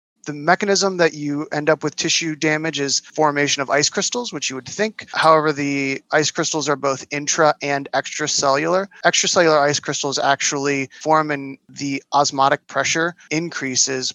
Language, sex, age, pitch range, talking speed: English, male, 20-39, 135-155 Hz, 155 wpm